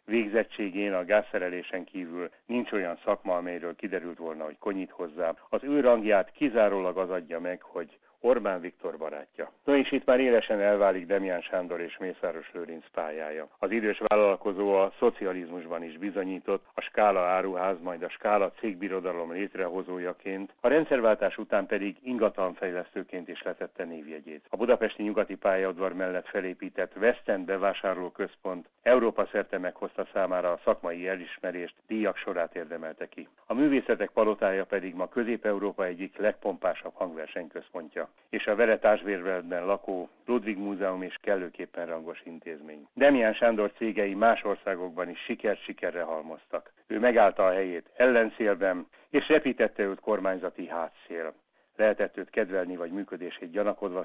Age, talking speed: 60-79, 135 wpm